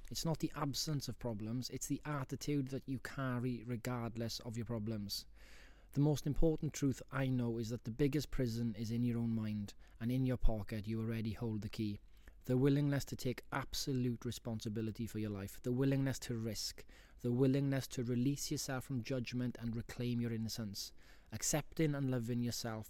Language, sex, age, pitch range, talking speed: English, male, 20-39, 110-135 Hz, 180 wpm